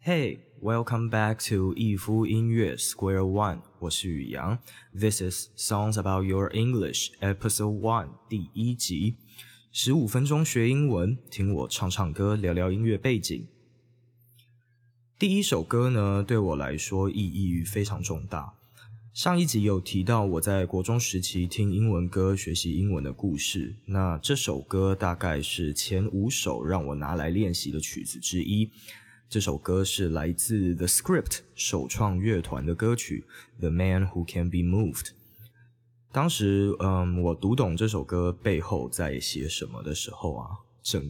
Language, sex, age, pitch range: Chinese, male, 20-39, 90-115 Hz